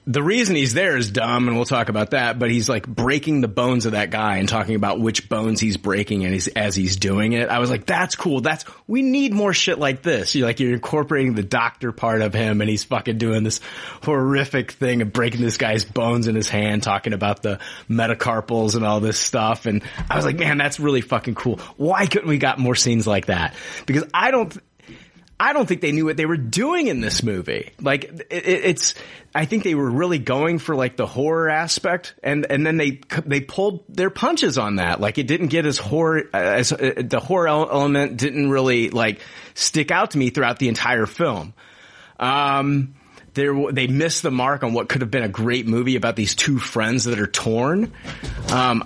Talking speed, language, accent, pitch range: 210 wpm, English, American, 110-145 Hz